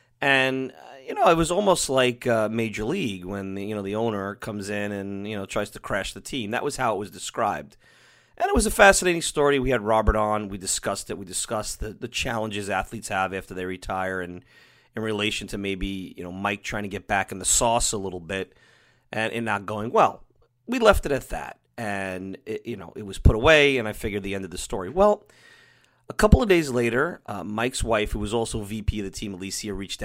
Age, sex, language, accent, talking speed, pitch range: 30-49, male, English, American, 230 wpm, 95-115 Hz